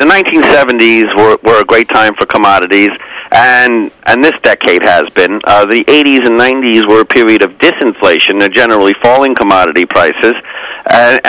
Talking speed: 165 wpm